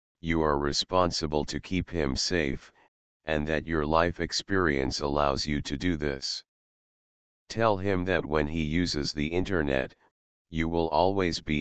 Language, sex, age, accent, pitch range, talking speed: English, male, 40-59, American, 75-90 Hz, 150 wpm